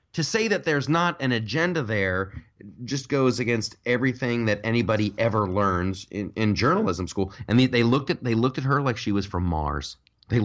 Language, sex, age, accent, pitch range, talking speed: English, male, 30-49, American, 100-145 Hz, 200 wpm